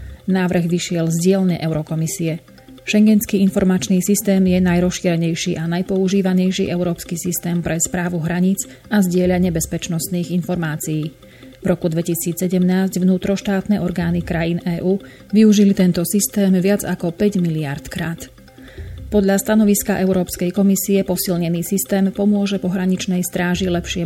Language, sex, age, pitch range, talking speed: Slovak, female, 30-49, 170-195 Hz, 115 wpm